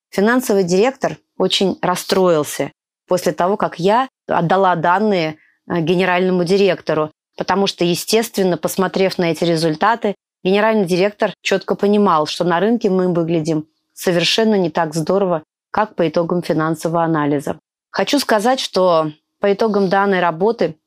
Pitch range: 175-200 Hz